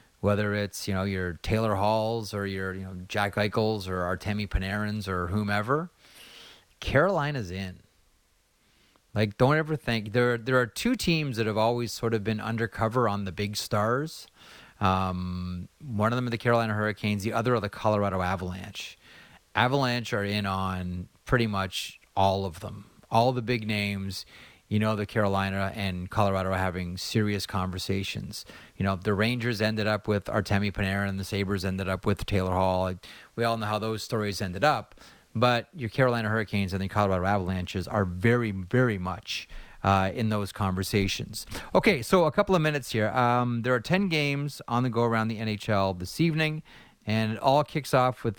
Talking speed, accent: 180 wpm, American